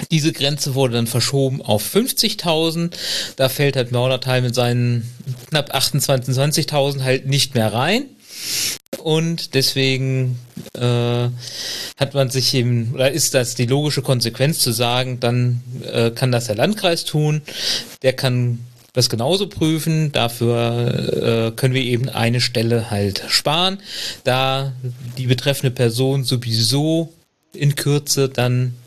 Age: 40-59